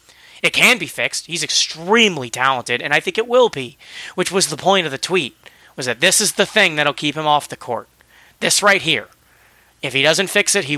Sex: male